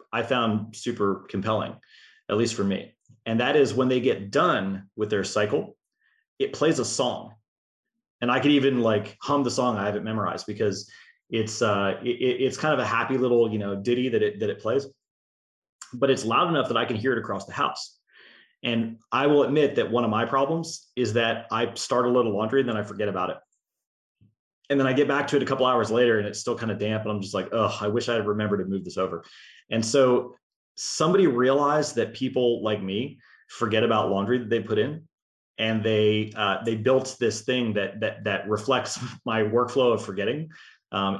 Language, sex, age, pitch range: English, male, 30-49, 105-130 Hz